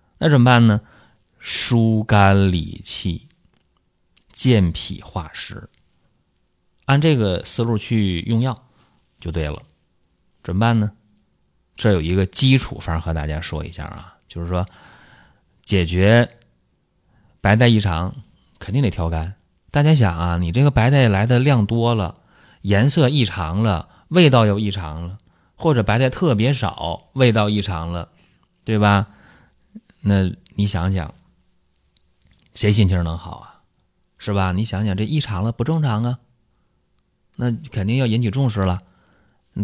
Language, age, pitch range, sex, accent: Chinese, 30-49, 90-120 Hz, male, native